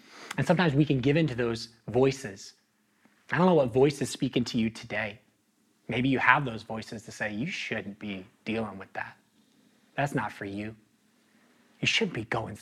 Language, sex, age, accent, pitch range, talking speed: English, male, 30-49, American, 110-140 Hz, 190 wpm